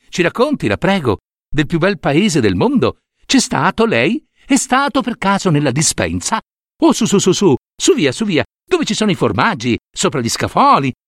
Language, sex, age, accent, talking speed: Italian, male, 60-79, native, 195 wpm